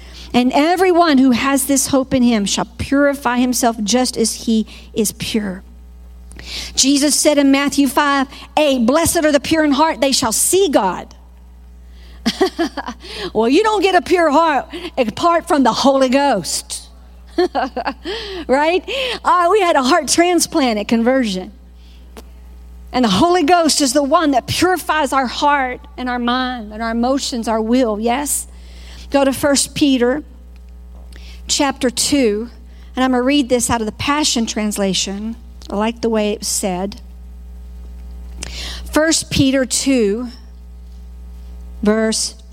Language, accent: English, American